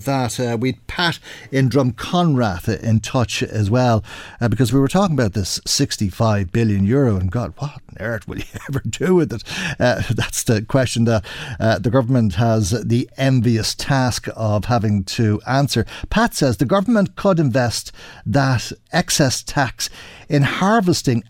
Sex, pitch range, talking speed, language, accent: male, 110-140 Hz, 165 wpm, English, Irish